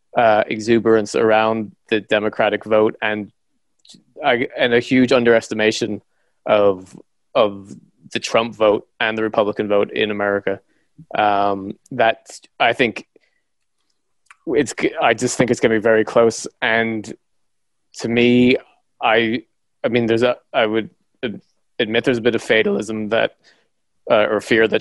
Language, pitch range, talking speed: English, 110-125 Hz, 140 wpm